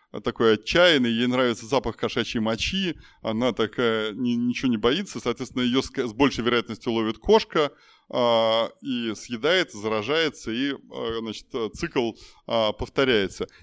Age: 20-39